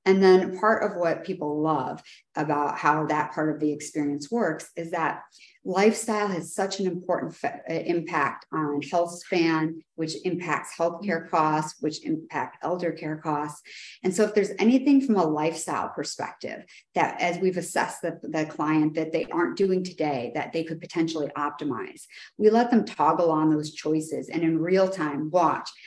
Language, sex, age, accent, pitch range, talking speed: English, female, 40-59, American, 155-190 Hz, 175 wpm